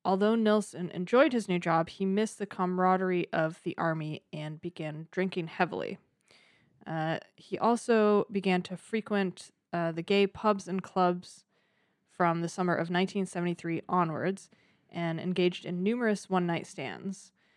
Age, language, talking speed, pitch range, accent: 20-39, English, 140 wpm, 165-200 Hz, American